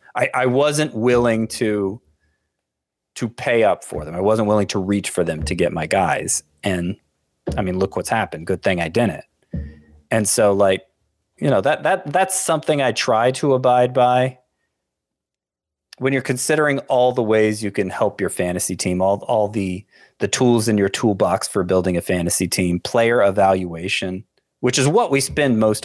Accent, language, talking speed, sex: American, English, 180 wpm, male